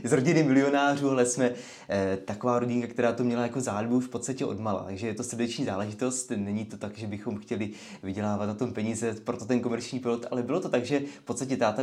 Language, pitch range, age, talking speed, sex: Czech, 115-130 Hz, 20-39, 220 wpm, male